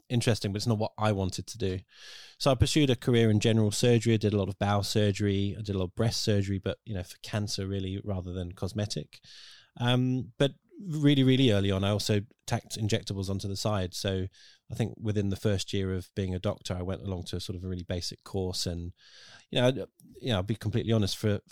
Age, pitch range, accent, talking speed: 20-39, 95-115 Hz, British, 235 wpm